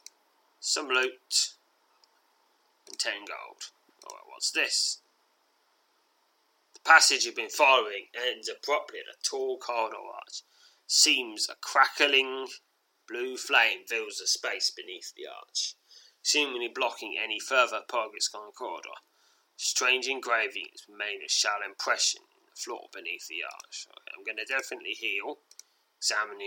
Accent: British